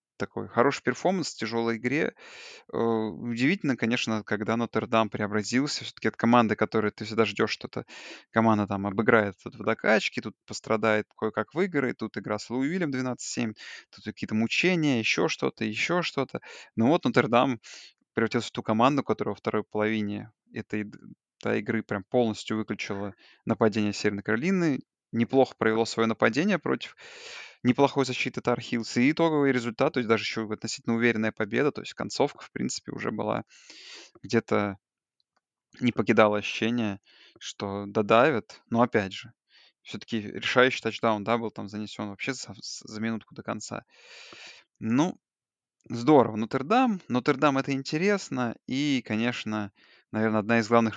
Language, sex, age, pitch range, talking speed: Russian, male, 20-39, 110-125 Hz, 145 wpm